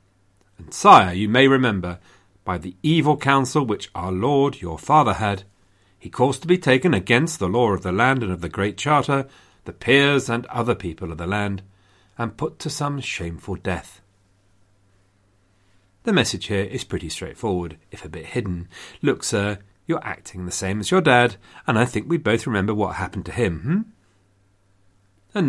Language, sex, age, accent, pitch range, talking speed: English, male, 40-59, British, 95-125 Hz, 180 wpm